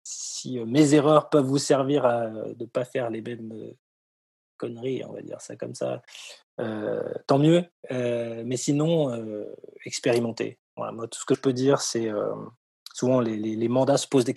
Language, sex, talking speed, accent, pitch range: French, male, 190 wpm, French, 110-140 Hz